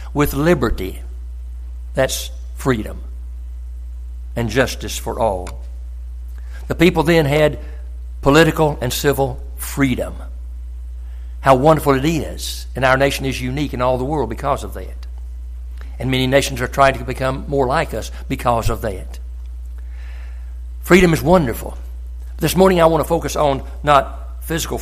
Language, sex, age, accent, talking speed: English, male, 60-79, American, 140 wpm